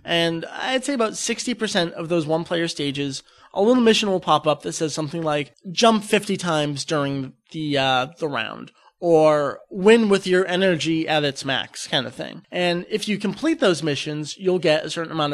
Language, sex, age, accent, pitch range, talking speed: English, male, 30-49, American, 160-220 Hz, 190 wpm